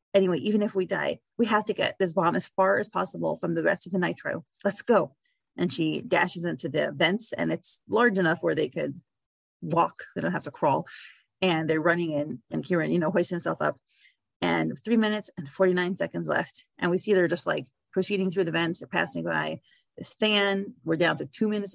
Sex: female